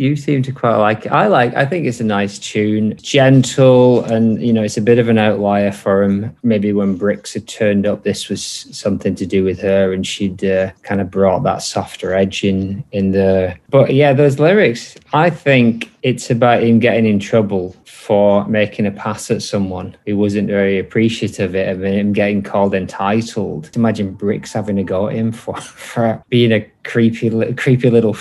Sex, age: male, 20-39